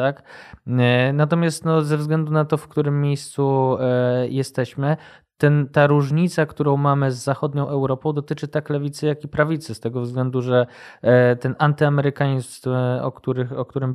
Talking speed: 155 wpm